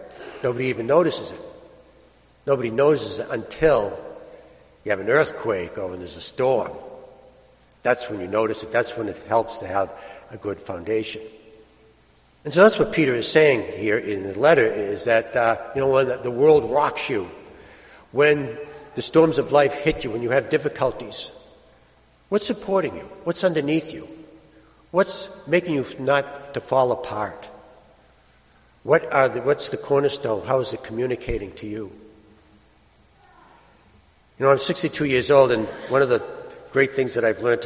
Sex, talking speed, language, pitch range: male, 165 wpm, English, 110-160 Hz